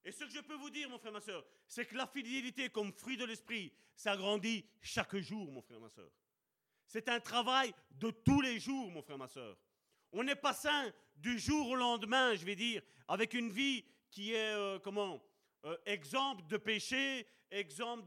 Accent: French